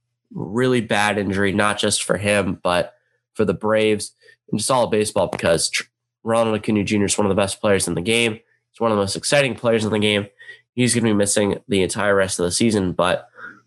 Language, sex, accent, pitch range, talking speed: English, male, American, 100-120 Hz, 215 wpm